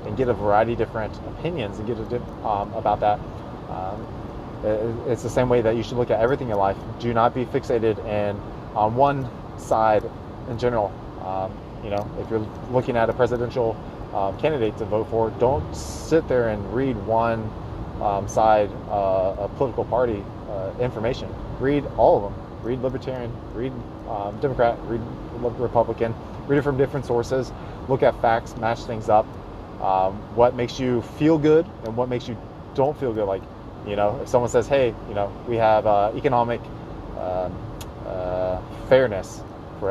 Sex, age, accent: male, 20-39, American